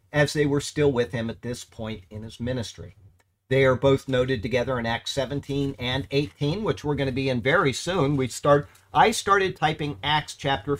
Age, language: 50-69, English